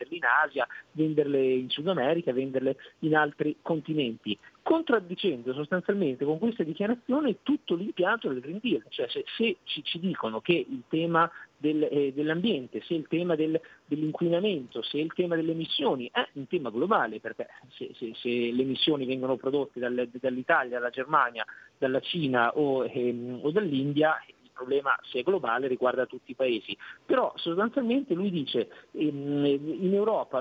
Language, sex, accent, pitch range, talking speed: Italian, male, native, 140-200 Hz, 150 wpm